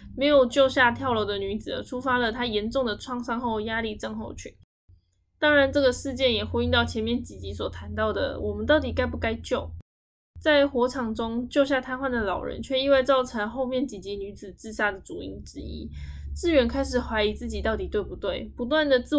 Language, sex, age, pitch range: Chinese, female, 10-29, 205-260 Hz